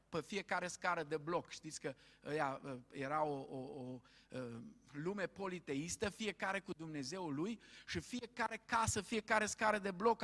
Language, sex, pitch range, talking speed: Romanian, male, 140-225 Hz, 140 wpm